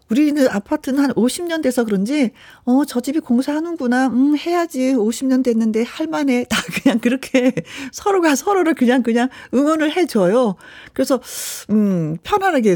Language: Korean